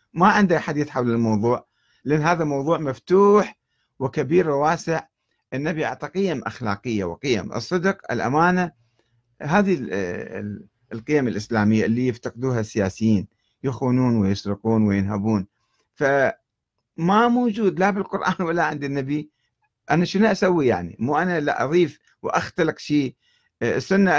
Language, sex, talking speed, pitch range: Arabic, male, 110 wpm, 115-150 Hz